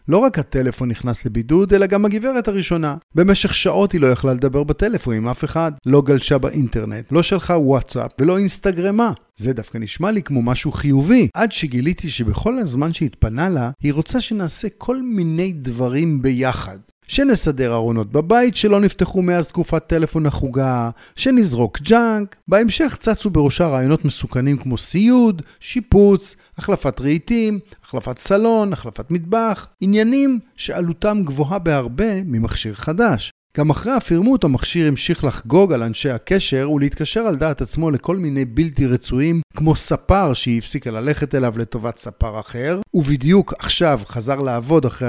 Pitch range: 130-190 Hz